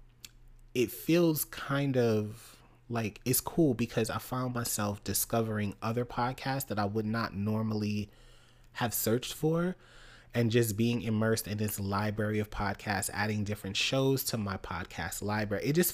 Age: 30-49